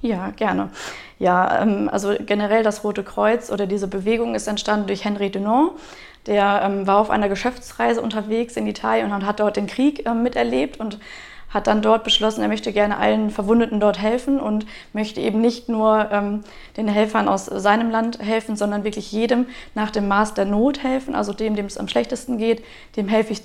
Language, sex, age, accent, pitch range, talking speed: German, female, 20-39, German, 205-230 Hz, 185 wpm